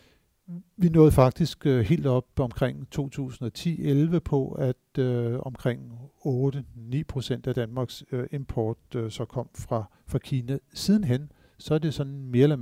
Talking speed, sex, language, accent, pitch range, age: 130 wpm, male, Danish, native, 120-150 Hz, 50-69